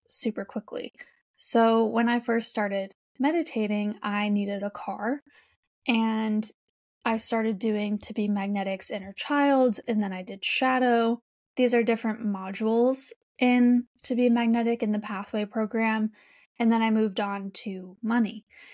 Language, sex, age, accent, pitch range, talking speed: English, female, 10-29, American, 210-240 Hz, 145 wpm